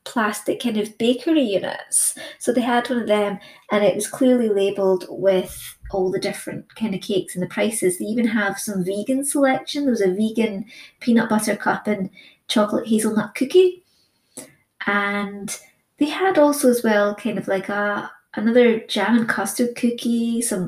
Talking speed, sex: 170 wpm, female